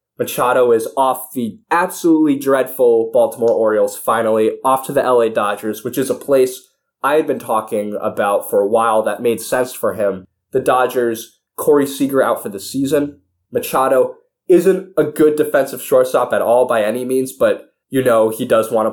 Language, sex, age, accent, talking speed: English, male, 20-39, American, 180 wpm